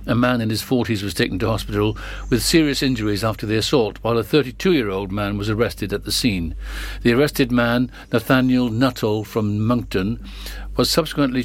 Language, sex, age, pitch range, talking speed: English, male, 60-79, 110-140 Hz, 175 wpm